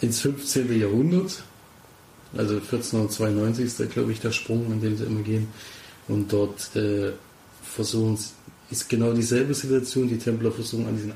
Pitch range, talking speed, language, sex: 105-120 Hz, 155 wpm, German, male